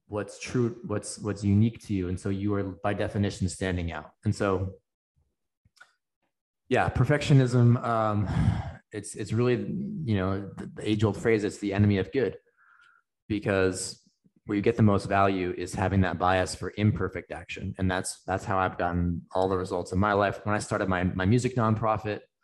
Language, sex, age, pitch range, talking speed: English, male, 20-39, 95-120 Hz, 180 wpm